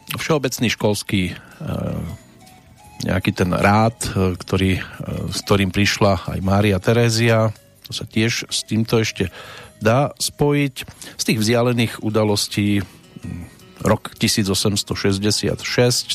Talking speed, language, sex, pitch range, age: 95 wpm, Slovak, male, 95-120 Hz, 40-59